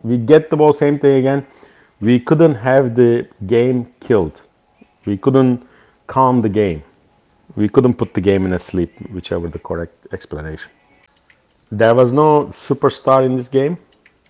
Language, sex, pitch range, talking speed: English, male, 100-120 Hz, 155 wpm